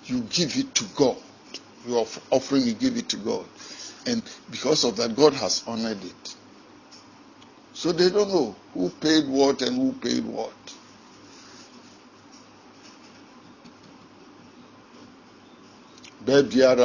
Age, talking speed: 60-79, 95 wpm